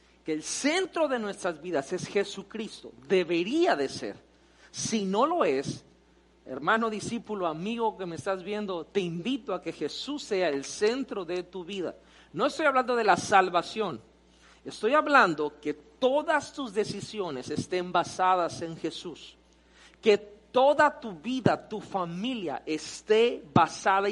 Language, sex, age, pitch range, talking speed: Spanish, male, 40-59, 170-245 Hz, 140 wpm